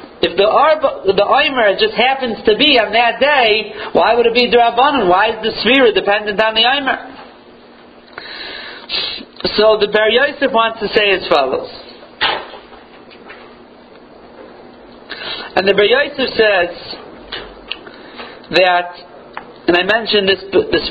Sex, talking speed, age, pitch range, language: male, 125 wpm, 50-69, 185-235 Hz, Italian